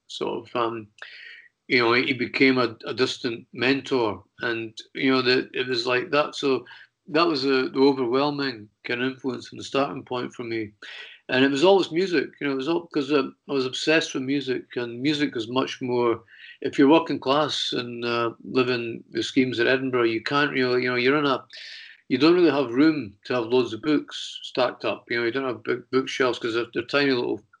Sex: male